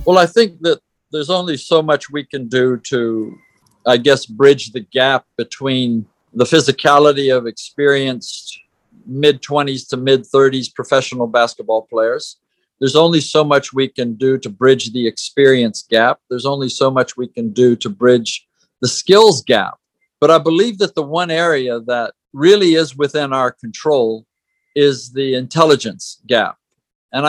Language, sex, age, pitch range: English, male, 50-69, 125-150 Hz